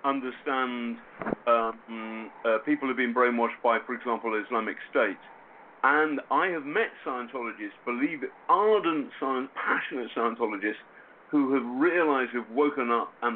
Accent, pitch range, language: British, 110-130 Hz, English